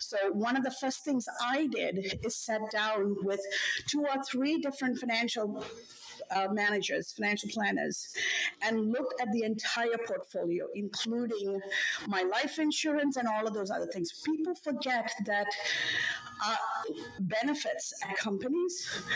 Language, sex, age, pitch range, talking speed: English, female, 50-69, 205-275 Hz, 135 wpm